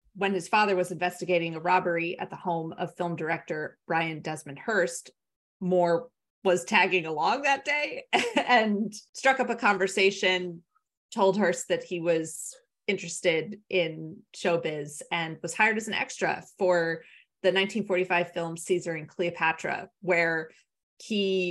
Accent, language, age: American, English, 30-49